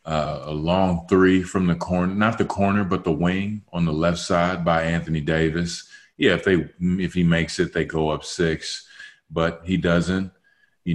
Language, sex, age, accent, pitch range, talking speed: English, male, 30-49, American, 80-100 Hz, 190 wpm